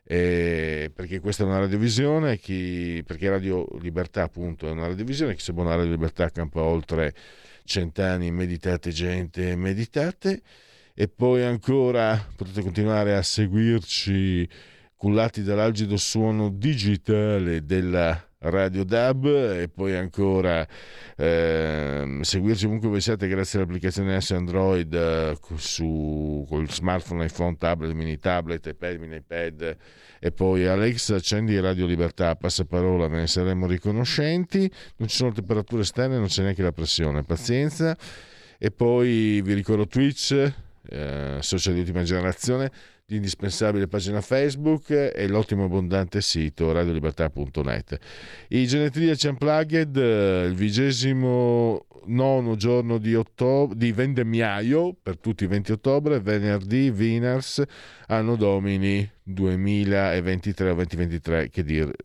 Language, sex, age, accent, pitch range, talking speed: Italian, male, 50-69, native, 85-115 Hz, 120 wpm